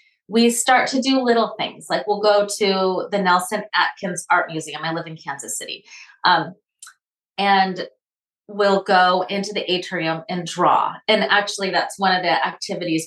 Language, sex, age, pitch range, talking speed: English, female, 30-49, 170-205 Hz, 165 wpm